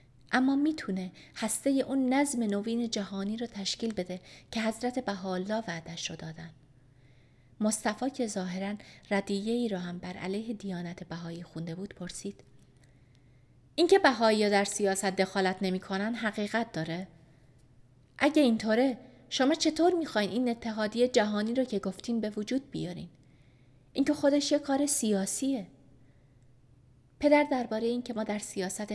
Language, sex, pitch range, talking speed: Persian, female, 170-230 Hz, 130 wpm